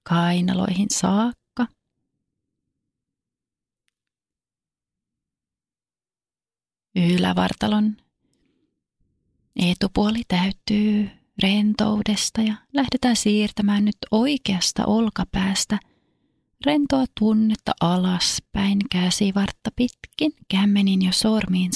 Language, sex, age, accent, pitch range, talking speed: Finnish, female, 30-49, native, 195-215 Hz, 55 wpm